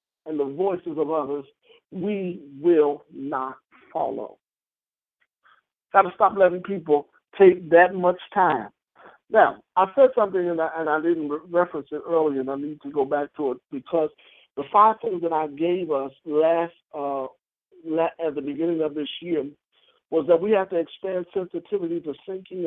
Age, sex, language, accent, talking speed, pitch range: 60-79, male, English, American, 165 wpm, 150-190 Hz